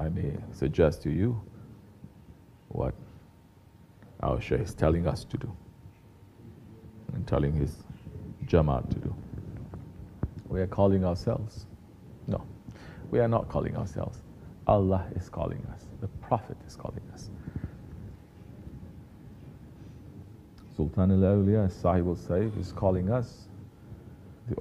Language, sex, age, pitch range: English, male, 40-59, 90-110 Hz